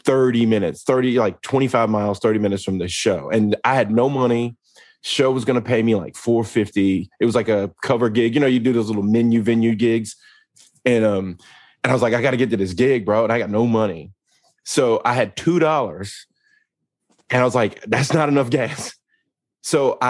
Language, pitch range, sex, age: English, 105-130 Hz, male, 20-39